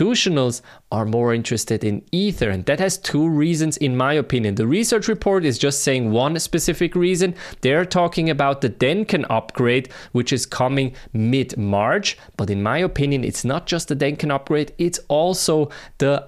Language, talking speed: English, 170 wpm